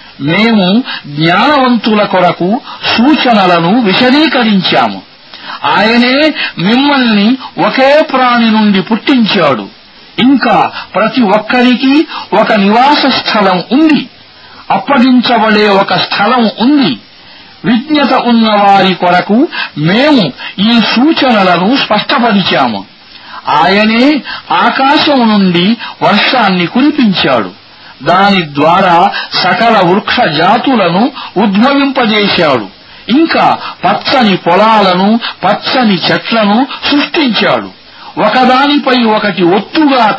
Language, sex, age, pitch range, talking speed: Arabic, male, 50-69, 200-270 Hz, 45 wpm